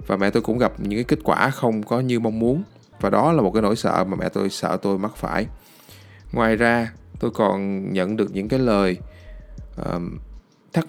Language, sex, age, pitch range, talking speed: Vietnamese, male, 20-39, 100-130 Hz, 210 wpm